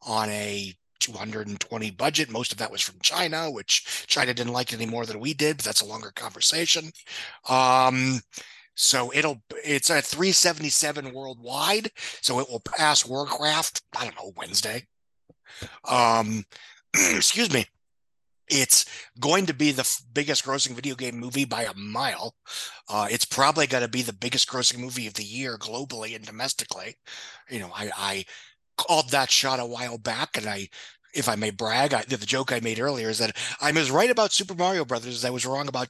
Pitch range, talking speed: 115-150 Hz, 180 wpm